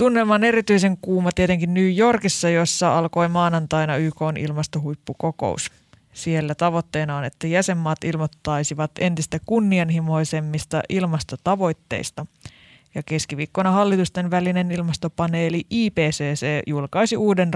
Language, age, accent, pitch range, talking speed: Finnish, 20-39, native, 150-190 Hz, 100 wpm